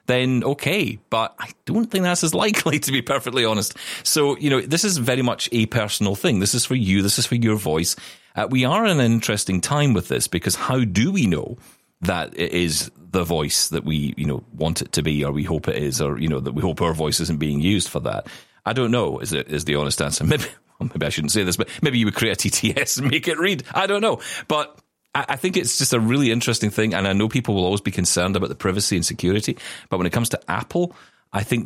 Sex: male